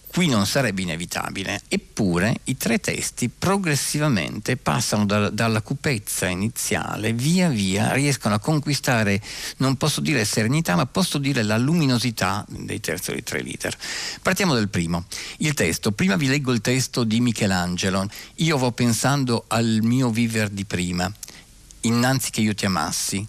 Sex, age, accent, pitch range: male, 50-69, native, 100-130 Hz